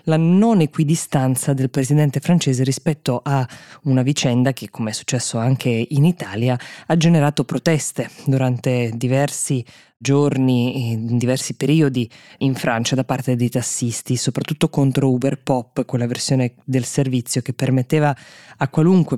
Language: Italian